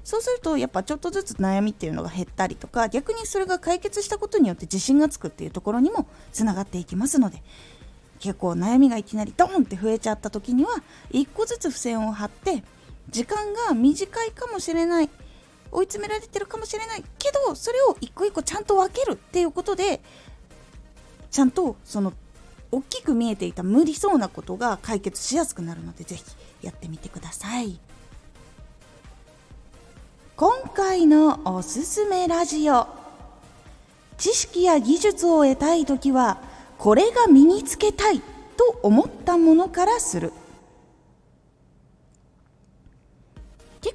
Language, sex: Japanese, female